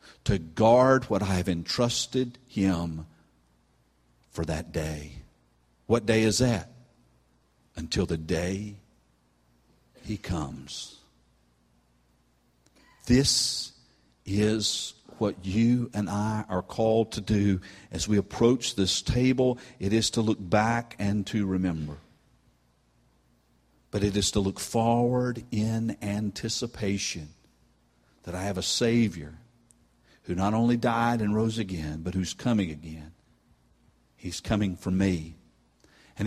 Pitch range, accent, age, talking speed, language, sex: 75-120 Hz, American, 50-69, 115 wpm, English, male